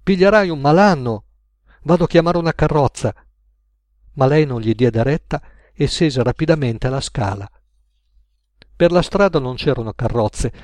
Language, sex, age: Italian, male, 50-69